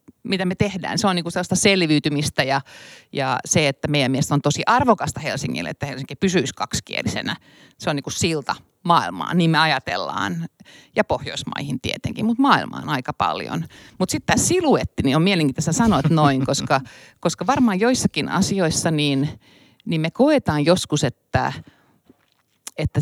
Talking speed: 155 wpm